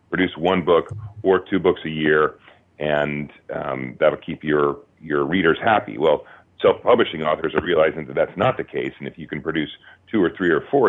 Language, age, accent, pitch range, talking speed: English, 40-59, American, 80-105 Hz, 205 wpm